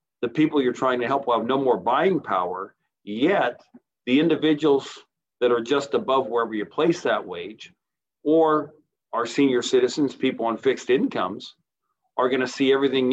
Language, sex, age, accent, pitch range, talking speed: English, male, 50-69, American, 120-140 Hz, 170 wpm